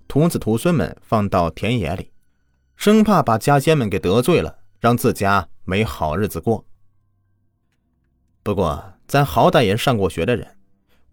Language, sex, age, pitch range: Chinese, male, 30-49, 90-120 Hz